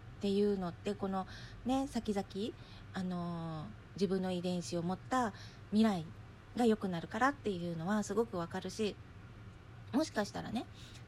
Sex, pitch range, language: female, 165-215 Hz, Japanese